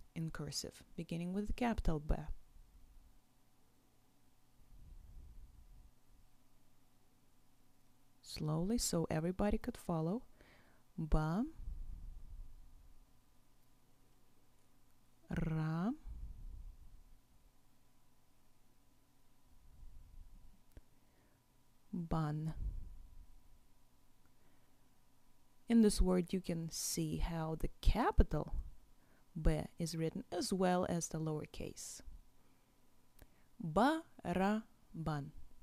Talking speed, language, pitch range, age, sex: 55 wpm, English, 125-200 Hz, 30-49, female